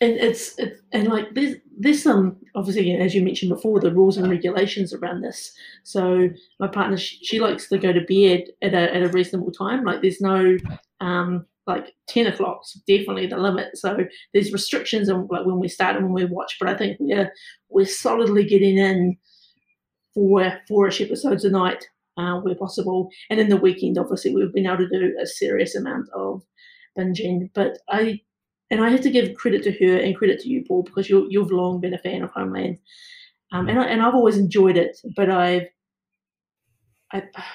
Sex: female